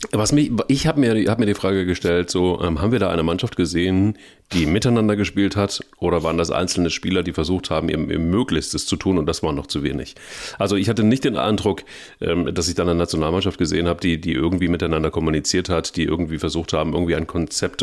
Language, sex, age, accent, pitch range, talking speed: German, male, 40-59, German, 85-105 Hz, 230 wpm